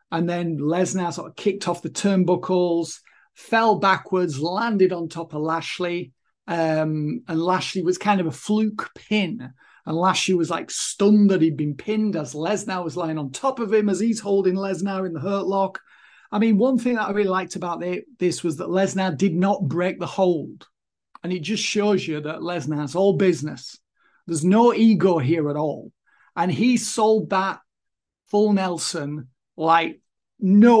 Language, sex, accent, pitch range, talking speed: English, male, British, 170-210 Hz, 175 wpm